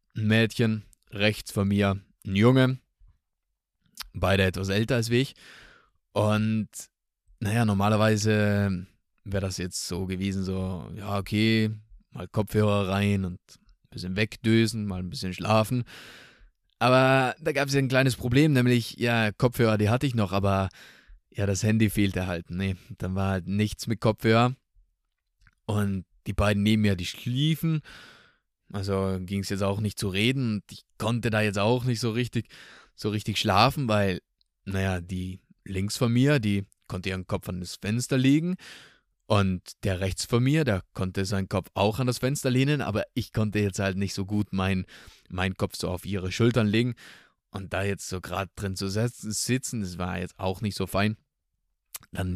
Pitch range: 95-115 Hz